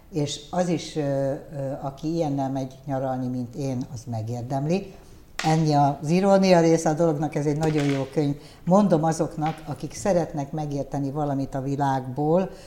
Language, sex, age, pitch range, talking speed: Hungarian, female, 60-79, 135-155 Hz, 140 wpm